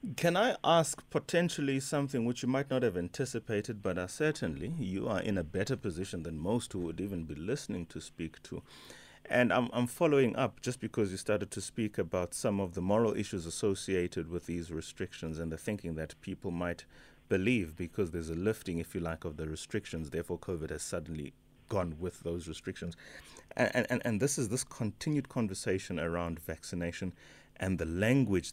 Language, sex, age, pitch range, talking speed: English, male, 30-49, 85-105 Hz, 185 wpm